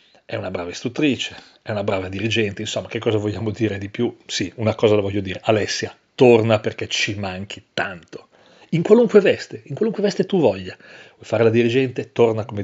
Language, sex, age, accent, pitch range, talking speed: Italian, male, 40-59, native, 105-135 Hz, 195 wpm